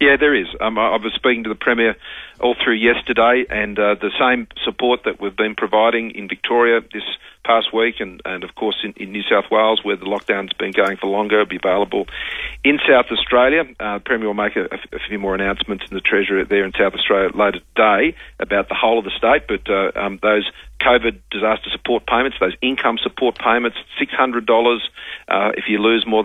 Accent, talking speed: Australian, 210 wpm